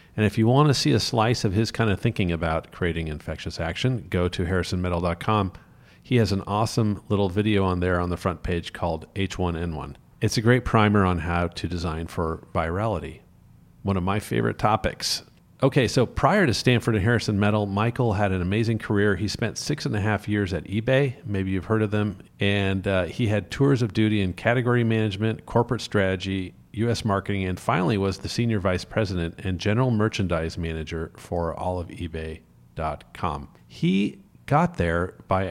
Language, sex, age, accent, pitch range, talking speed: English, male, 40-59, American, 90-110 Hz, 185 wpm